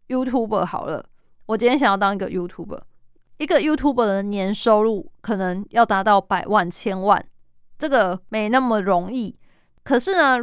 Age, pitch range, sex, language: 20-39, 190-240 Hz, female, Chinese